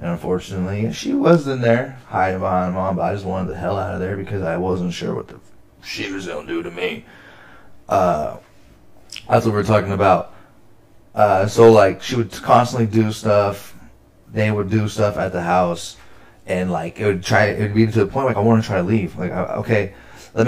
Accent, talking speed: American, 215 wpm